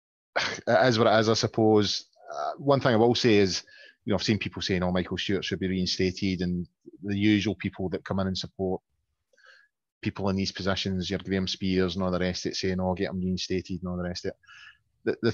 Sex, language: male, English